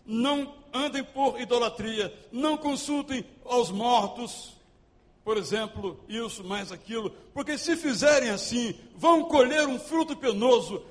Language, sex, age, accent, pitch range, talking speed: Portuguese, male, 60-79, Brazilian, 190-270 Hz, 120 wpm